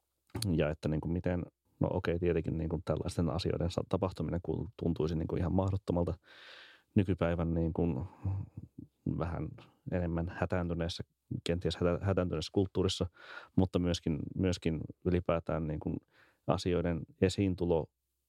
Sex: male